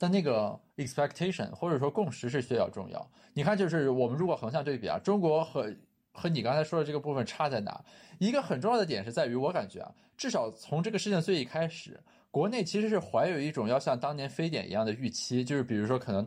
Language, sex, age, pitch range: Chinese, male, 20-39, 120-170 Hz